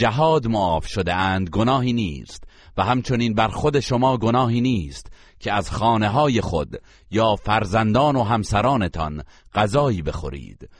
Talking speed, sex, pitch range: 120 wpm, male, 95-125 Hz